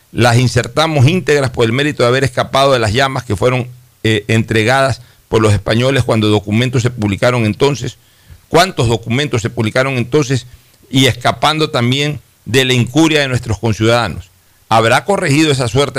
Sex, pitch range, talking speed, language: male, 115-145 Hz, 145 wpm, Spanish